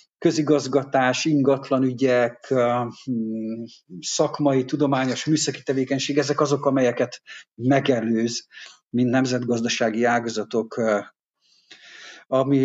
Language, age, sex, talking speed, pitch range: Hungarian, 50-69, male, 65 wpm, 120-145 Hz